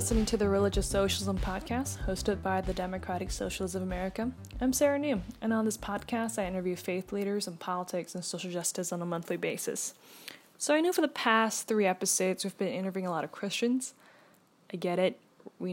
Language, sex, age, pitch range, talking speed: English, female, 10-29, 180-220 Hz, 200 wpm